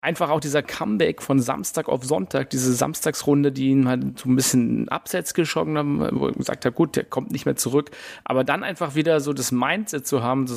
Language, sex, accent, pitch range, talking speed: German, male, German, 120-150 Hz, 220 wpm